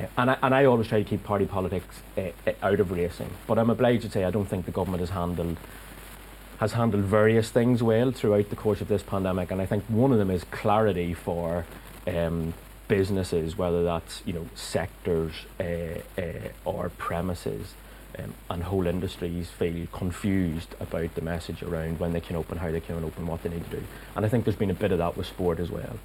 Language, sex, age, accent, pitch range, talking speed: English, male, 30-49, British, 85-105 Hz, 215 wpm